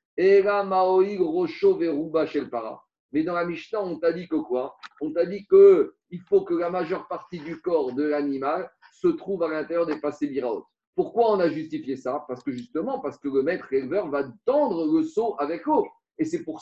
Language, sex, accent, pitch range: French, male, French, 145-210 Hz